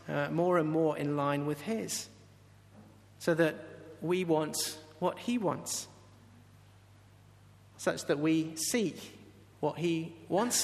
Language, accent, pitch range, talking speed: English, British, 105-170 Hz, 125 wpm